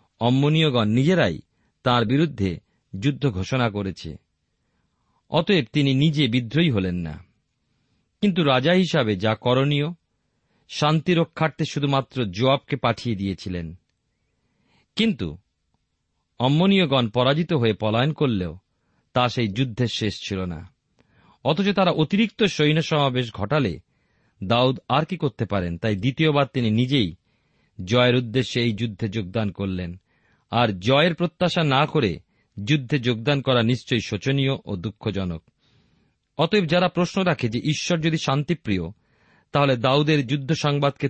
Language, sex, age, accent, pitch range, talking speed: Bengali, male, 40-59, native, 110-150 Hz, 115 wpm